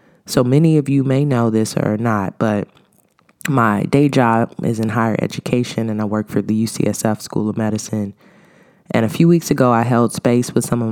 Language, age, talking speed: English, 20-39, 205 wpm